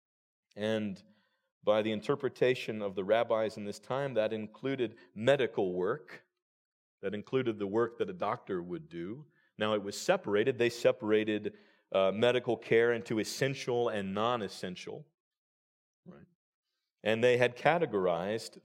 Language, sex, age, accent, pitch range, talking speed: English, male, 40-59, American, 100-135 Hz, 130 wpm